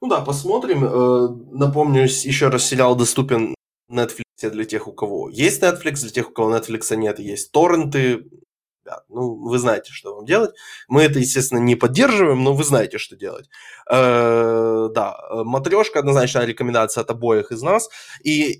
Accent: native